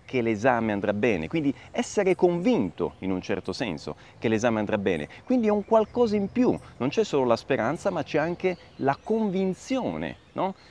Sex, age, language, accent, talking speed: male, 30-49, Italian, native, 180 wpm